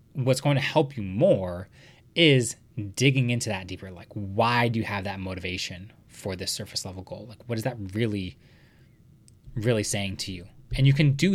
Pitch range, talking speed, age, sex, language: 100-130 Hz, 190 wpm, 20-39, male, English